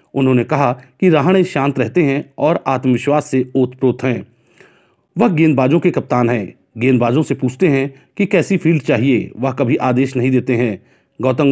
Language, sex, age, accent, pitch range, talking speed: Hindi, male, 40-59, native, 125-165 Hz, 165 wpm